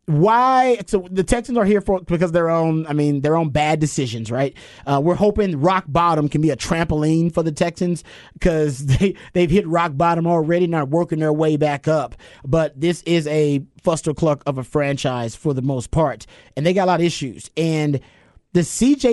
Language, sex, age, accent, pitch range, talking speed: English, male, 30-49, American, 150-200 Hz, 205 wpm